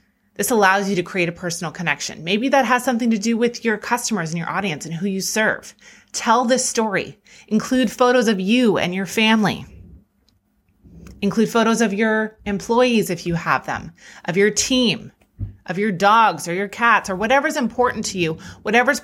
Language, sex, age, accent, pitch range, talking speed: English, female, 30-49, American, 170-220 Hz, 185 wpm